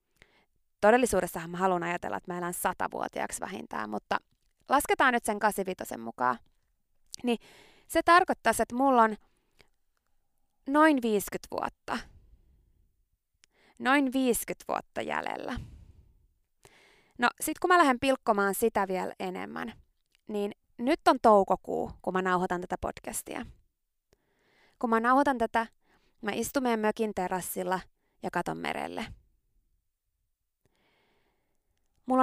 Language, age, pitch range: Finnish, 20-39, 185-255 Hz